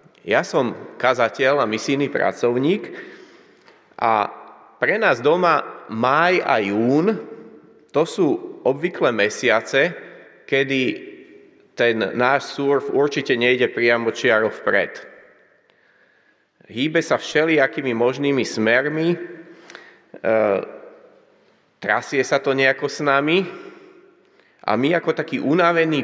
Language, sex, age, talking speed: Slovak, male, 30-49, 100 wpm